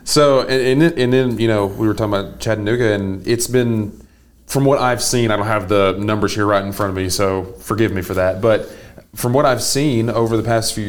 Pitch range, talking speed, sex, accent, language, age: 100-120 Hz, 235 wpm, male, American, English, 30-49